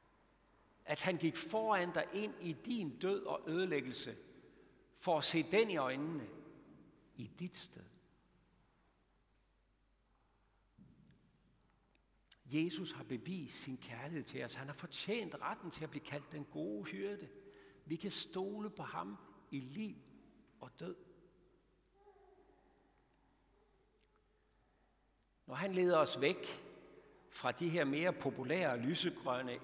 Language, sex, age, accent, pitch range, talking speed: Danish, male, 60-79, native, 140-185 Hz, 115 wpm